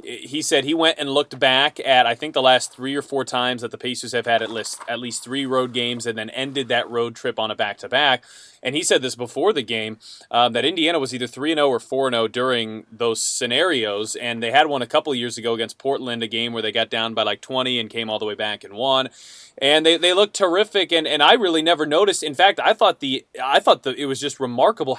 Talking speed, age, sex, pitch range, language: 270 wpm, 20-39, male, 120-150 Hz, English